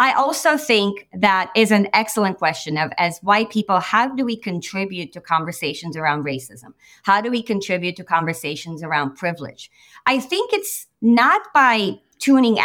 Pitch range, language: 180-245 Hz, English